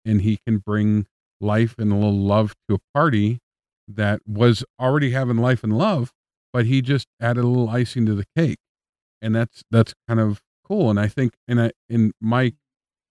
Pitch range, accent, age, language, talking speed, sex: 100-115 Hz, American, 50-69, English, 195 wpm, male